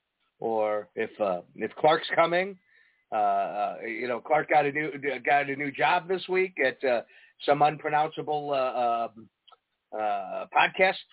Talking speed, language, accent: 150 wpm, English, American